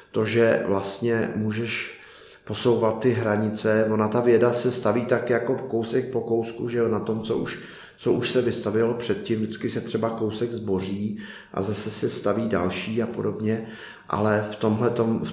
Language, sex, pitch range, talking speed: Czech, male, 105-120 Hz, 160 wpm